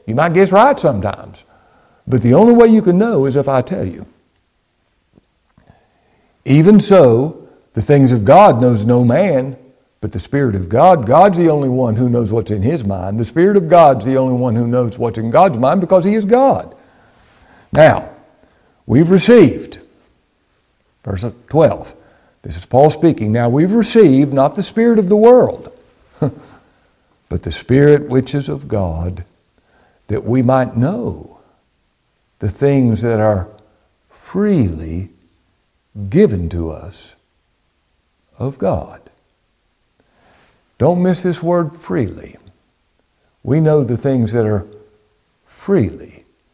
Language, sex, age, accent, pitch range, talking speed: English, male, 60-79, American, 100-150 Hz, 140 wpm